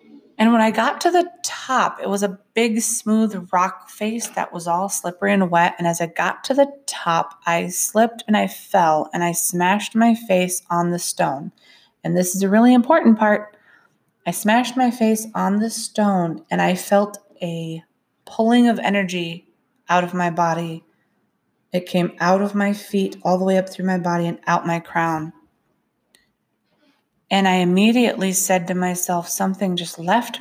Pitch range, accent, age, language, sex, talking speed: 175-220 Hz, American, 20-39, English, female, 180 wpm